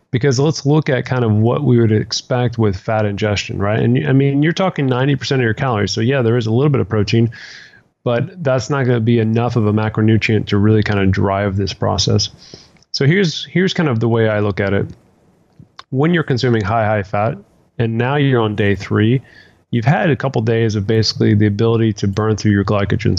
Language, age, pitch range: English, 30-49, 105-130 Hz